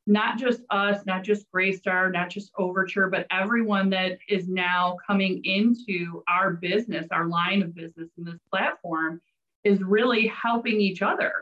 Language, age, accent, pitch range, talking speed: English, 30-49, American, 175-205 Hz, 160 wpm